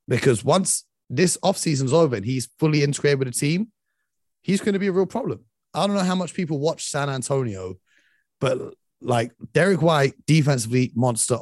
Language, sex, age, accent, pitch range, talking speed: English, male, 30-49, British, 120-170 Hz, 180 wpm